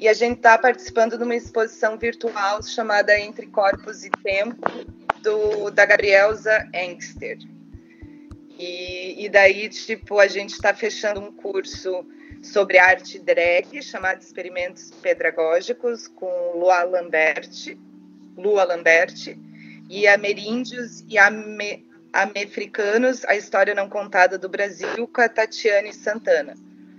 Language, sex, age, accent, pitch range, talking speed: Portuguese, female, 20-39, Brazilian, 185-230 Hz, 120 wpm